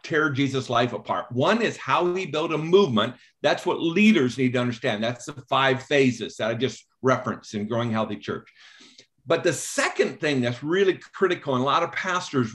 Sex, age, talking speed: male, 50-69, 195 wpm